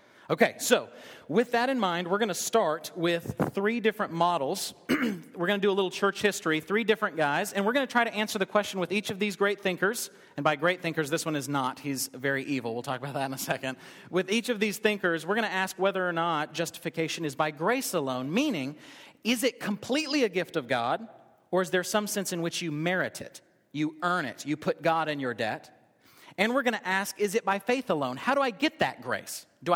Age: 40-59